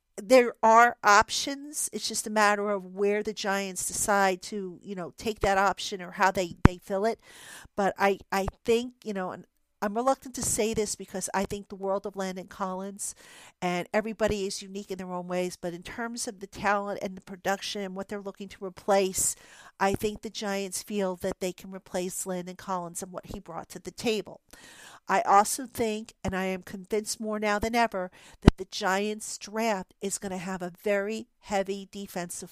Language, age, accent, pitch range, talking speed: English, 50-69, American, 190-215 Hz, 200 wpm